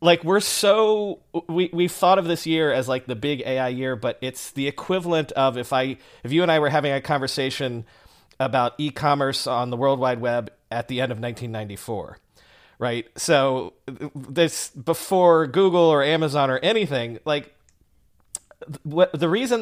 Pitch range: 115-160 Hz